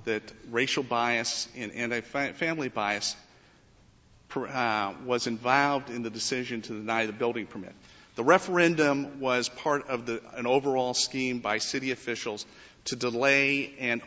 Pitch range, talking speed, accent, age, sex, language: 115-140 Hz, 130 wpm, American, 50-69, male, English